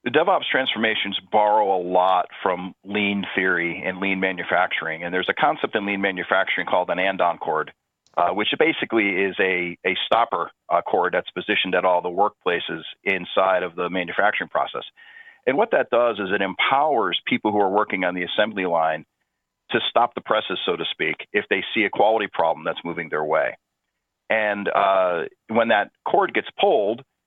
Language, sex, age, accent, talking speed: English, male, 40-59, American, 185 wpm